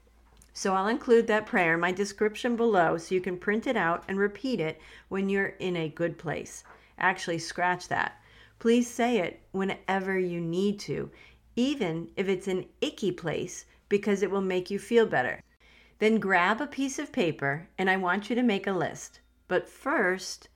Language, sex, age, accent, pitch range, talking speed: English, female, 40-59, American, 170-220 Hz, 185 wpm